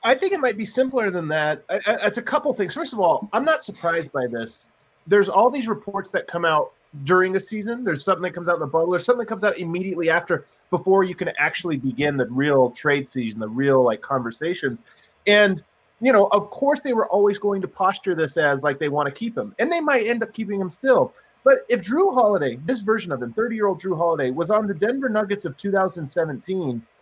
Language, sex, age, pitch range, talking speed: English, male, 30-49, 160-205 Hz, 230 wpm